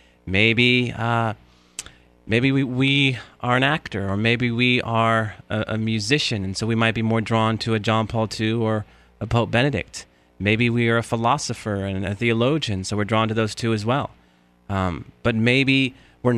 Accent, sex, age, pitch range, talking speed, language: American, male, 30-49, 105-145 Hz, 185 wpm, English